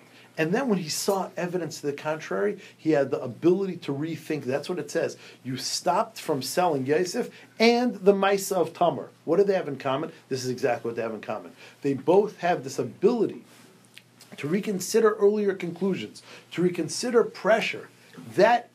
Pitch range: 135-190 Hz